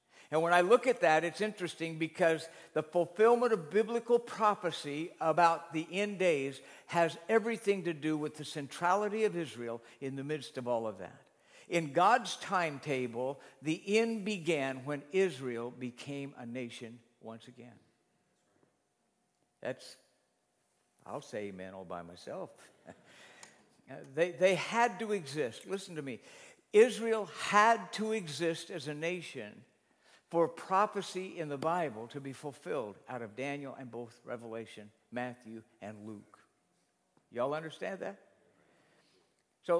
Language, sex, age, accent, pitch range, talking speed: English, male, 60-79, American, 135-185 Hz, 135 wpm